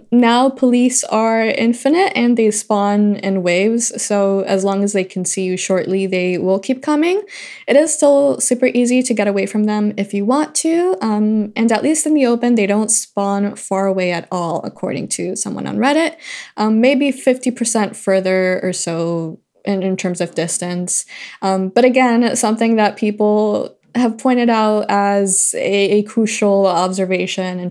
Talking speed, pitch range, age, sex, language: 180 wpm, 190-235 Hz, 20-39, female, English